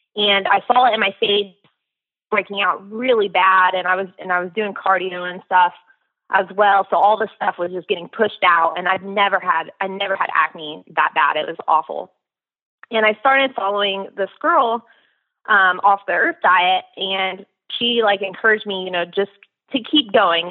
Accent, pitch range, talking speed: American, 185-225 Hz, 195 wpm